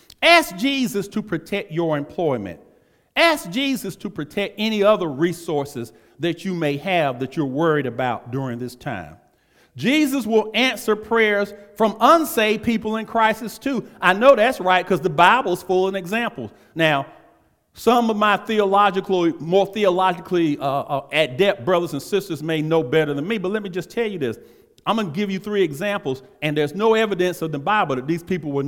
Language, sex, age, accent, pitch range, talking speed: English, male, 40-59, American, 160-225 Hz, 180 wpm